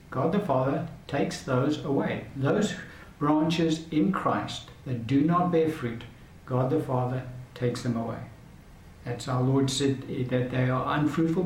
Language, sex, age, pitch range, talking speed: English, male, 60-79, 125-155 Hz, 150 wpm